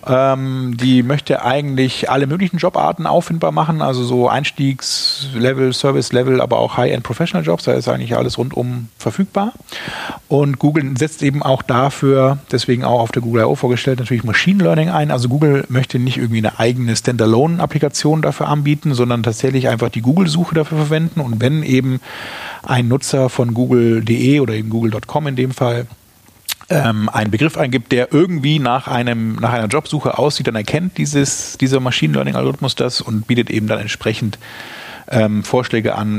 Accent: German